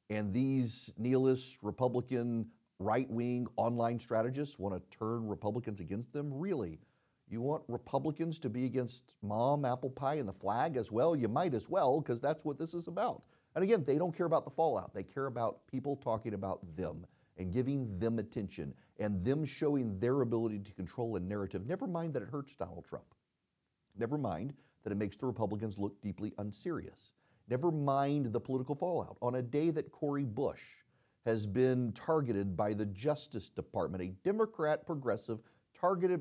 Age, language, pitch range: 40-59, English, 100-145 Hz